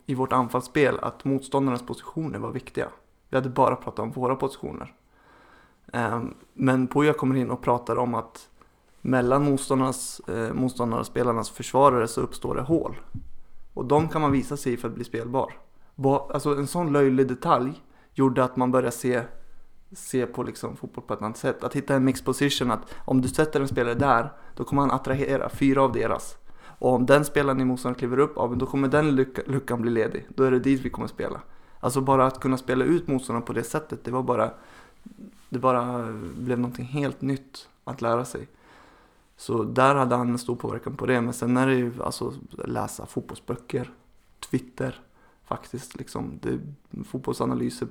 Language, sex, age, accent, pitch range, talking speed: Swedish, male, 20-39, native, 120-135 Hz, 180 wpm